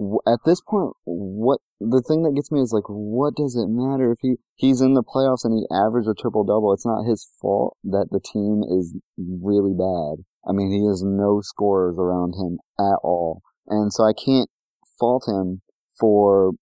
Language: English